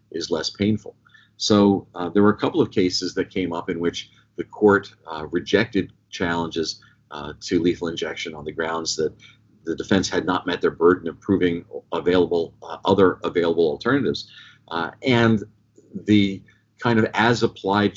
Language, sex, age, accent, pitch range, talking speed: English, male, 50-69, American, 90-105 Hz, 165 wpm